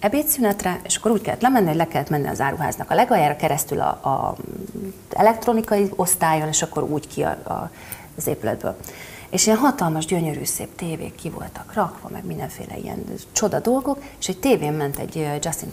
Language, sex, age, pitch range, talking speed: Hungarian, female, 30-49, 145-210 Hz, 170 wpm